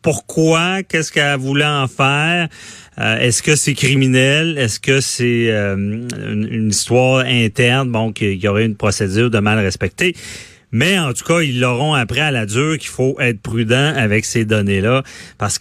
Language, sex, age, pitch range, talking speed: French, male, 40-59, 110-140 Hz, 170 wpm